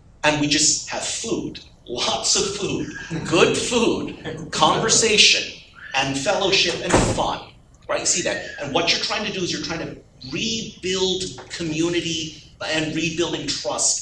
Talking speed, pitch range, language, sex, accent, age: 140 wpm, 145-185 Hz, English, male, American, 40-59